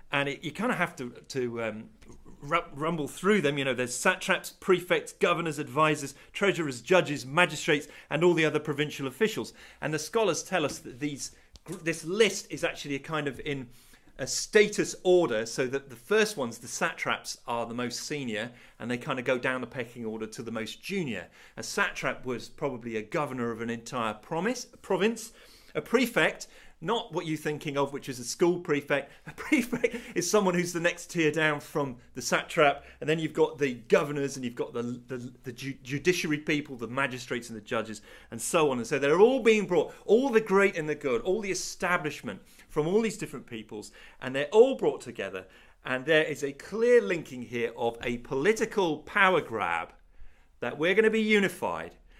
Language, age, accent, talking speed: English, 40-59, British, 200 wpm